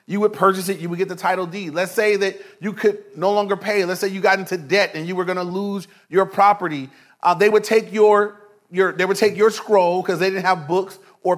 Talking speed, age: 235 wpm, 30-49